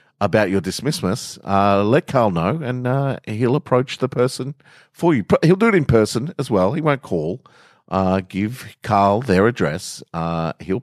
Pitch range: 85-125 Hz